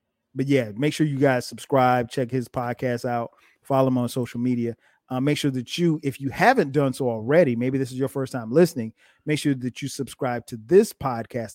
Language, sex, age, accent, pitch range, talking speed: English, male, 30-49, American, 120-140 Hz, 220 wpm